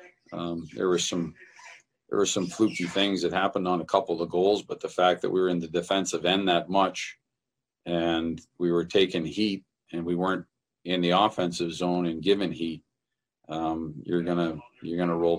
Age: 50-69